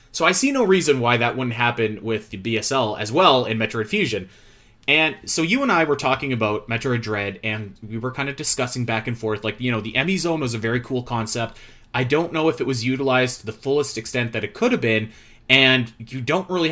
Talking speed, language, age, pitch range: 240 wpm, English, 20-39, 115-145 Hz